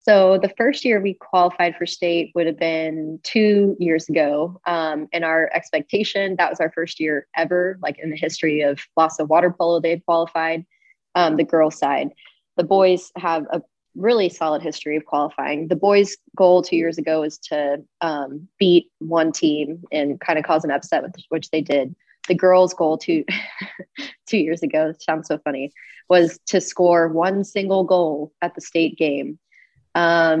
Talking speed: 180 wpm